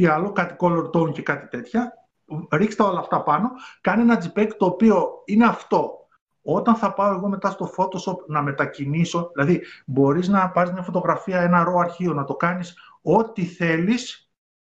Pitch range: 155-195 Hz